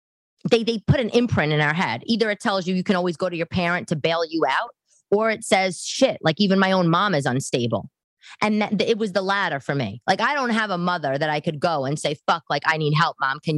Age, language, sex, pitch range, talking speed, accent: 20-39, English, female, 160-225 Hz, 270 wpm, American